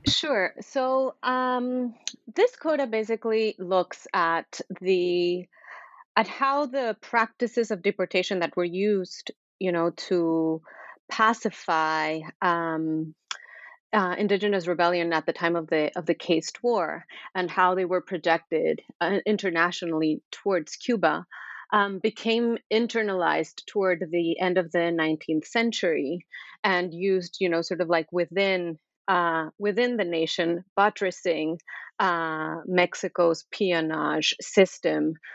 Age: 30-49